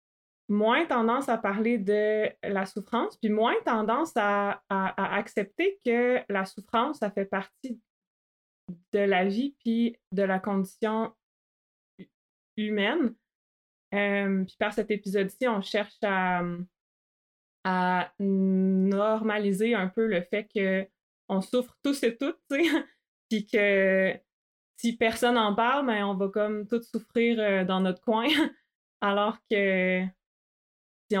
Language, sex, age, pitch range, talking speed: French, female, 20-39, 195-230 Hz, 125 wpm